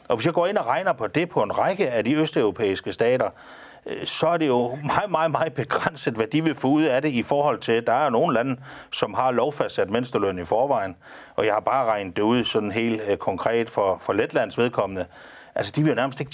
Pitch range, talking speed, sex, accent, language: 110-145 Hz, 240 wpm, male, native, Danish